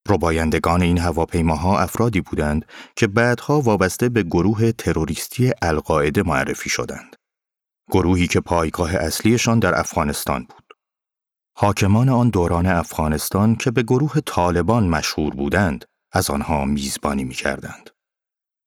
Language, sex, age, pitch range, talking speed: Persian, male, 30-49, 80-115 Hz, 115 wpm